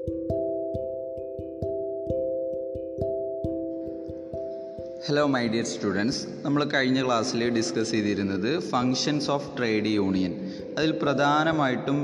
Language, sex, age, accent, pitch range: Malayalam, male, 20-39, native, 110-135 Hz